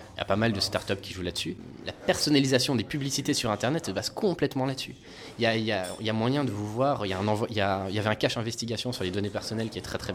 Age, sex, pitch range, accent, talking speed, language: 20-39, male, 100-130 Hz, French, 325 wpm, French